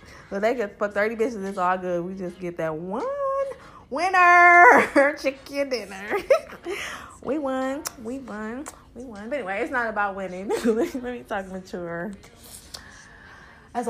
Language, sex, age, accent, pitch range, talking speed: English, female, 20-39, American, 210-315 Hz, 150 wpm